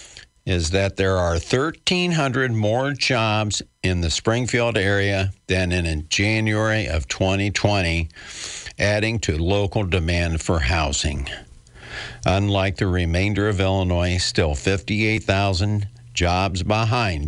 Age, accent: 60-79, American